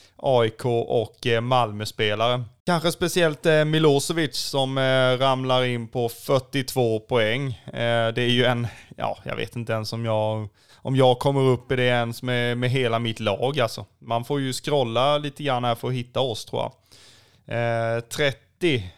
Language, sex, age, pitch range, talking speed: Swedish, male, 20-39, 115-140 Hz, 170 wpm